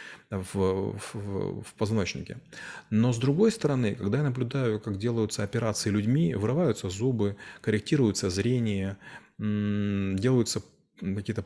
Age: 30-49